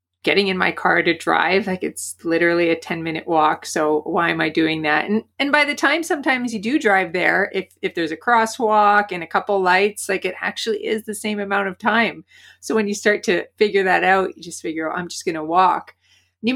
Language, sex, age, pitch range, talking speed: English, female, 30-49, 165-200 Hz, 235 wpm